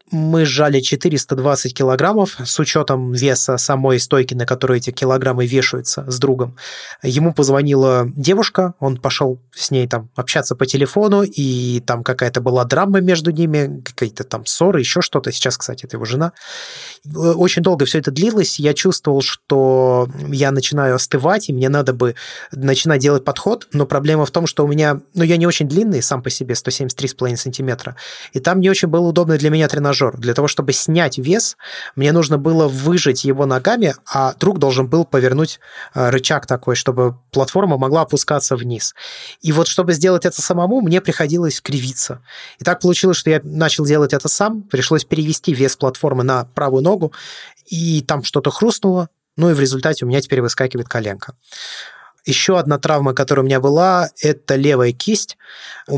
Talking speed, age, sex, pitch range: 170 wpm, 20-39, male, 130-165 Hz